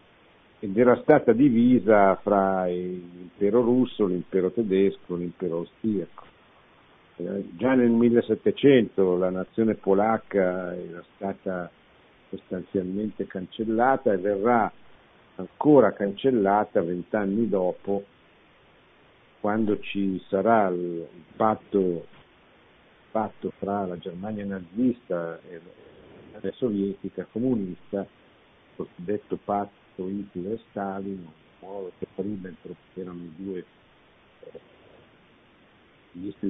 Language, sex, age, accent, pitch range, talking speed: Italian, male, 50-69, native, 95-115 Hz, 85 wpm